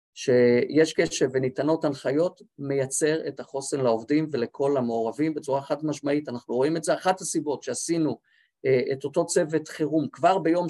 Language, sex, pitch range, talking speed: Hebrew, male, 135-175 Hz, 150 wpm